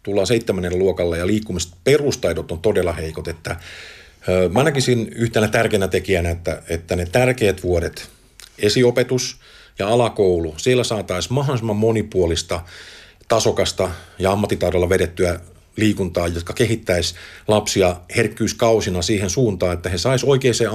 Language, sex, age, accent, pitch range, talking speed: Finnish, male, 50-69, native, 90-115 Hz, 120 wpm